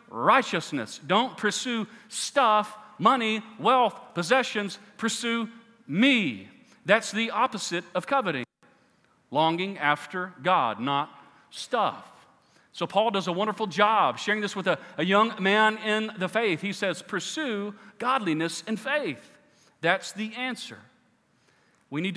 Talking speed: 125 wpm